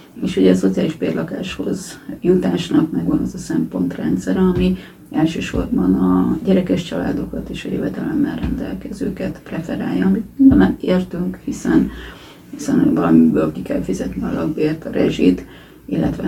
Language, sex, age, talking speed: Hungarian, female, 30-49, 125 wpm